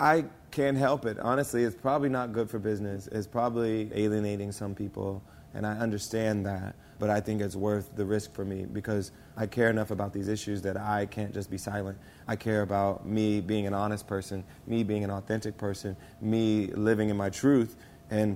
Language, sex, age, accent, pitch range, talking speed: English, male, 30-49, American, 100-110 Hz, 200 wpm